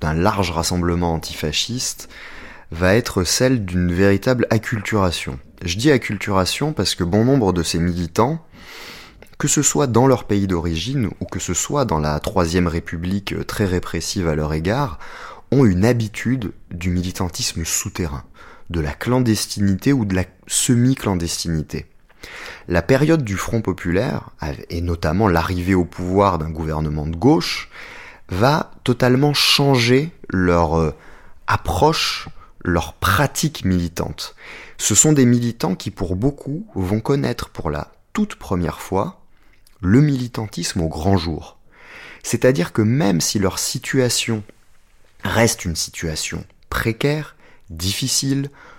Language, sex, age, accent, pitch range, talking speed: French, male, 20-39, French, 85-125 Hz, 130 wpm